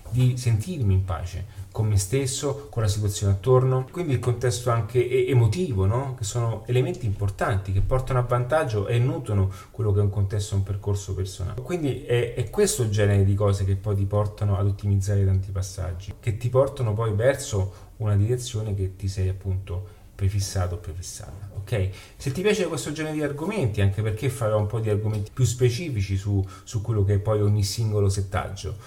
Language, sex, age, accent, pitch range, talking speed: Italian, male, 30-49, native, 100-125 Hz, 185 wpm